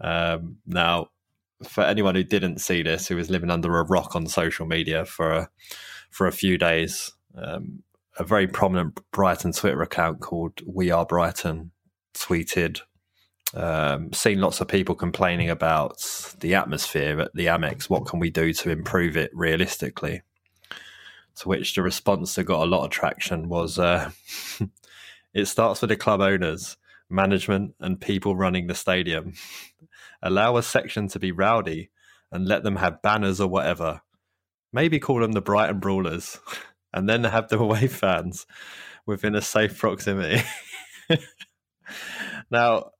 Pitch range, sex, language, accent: 90-100 Hz, male, English, British